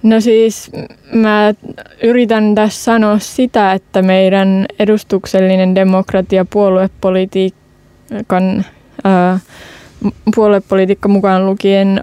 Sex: female